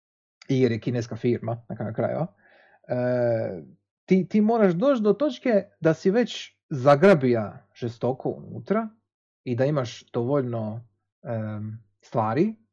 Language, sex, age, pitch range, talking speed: Croatian, male, 30-49, 115-155 Hz, 120 wpm